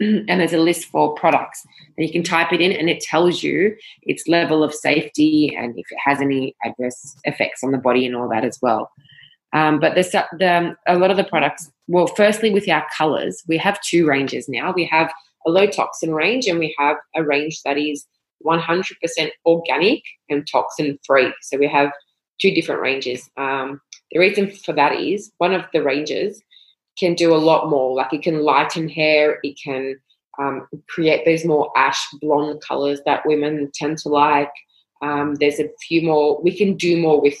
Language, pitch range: English, 145-170 Hz